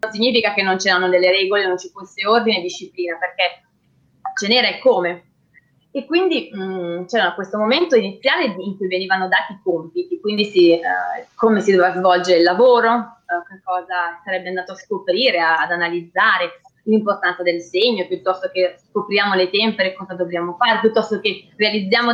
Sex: female